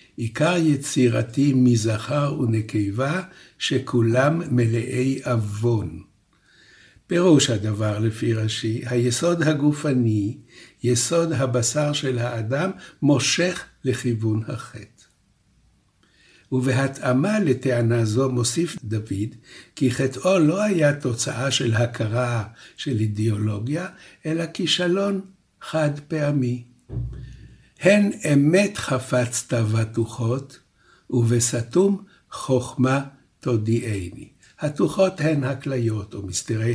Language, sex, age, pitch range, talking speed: Hebrew, male, 60-79, 115-150 Hz, 80 wpm